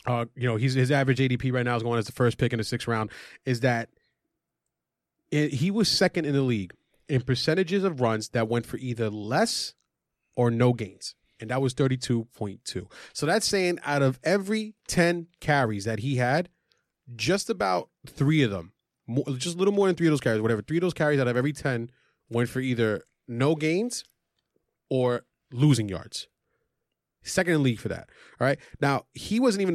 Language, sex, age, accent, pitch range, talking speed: English, male, 30-49, American, 120-165 Hz, 200 wpm